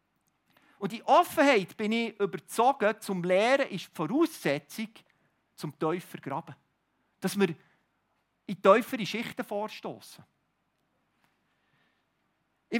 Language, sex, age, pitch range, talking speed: German, male, 50-69, 190-260 Hz, 105 wpm